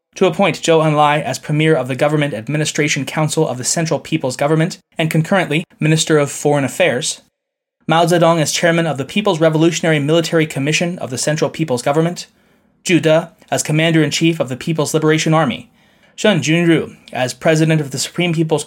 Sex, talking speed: male, 175 wpm